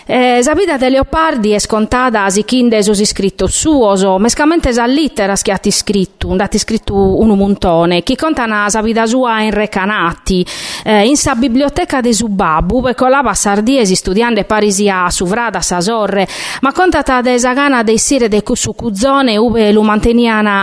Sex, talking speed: female, 160 wpm